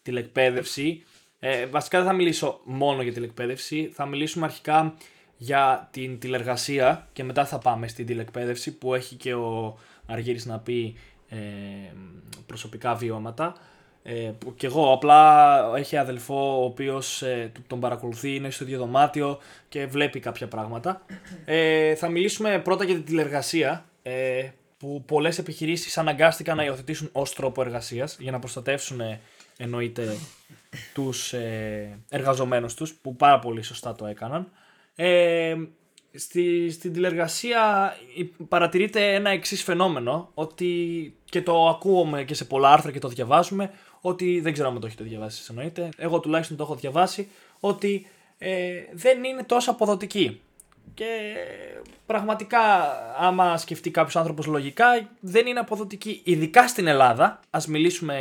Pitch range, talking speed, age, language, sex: 125-175 Hz, 135 wpm, 20-39, Greek, male